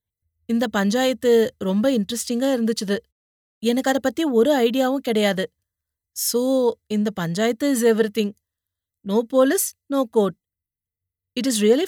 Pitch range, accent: 180-240 Hz, native